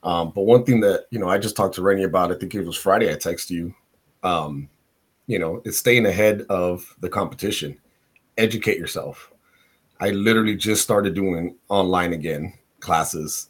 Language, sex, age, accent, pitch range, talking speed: English, male, 30-49, American, 90-105 Hz, 180 wpm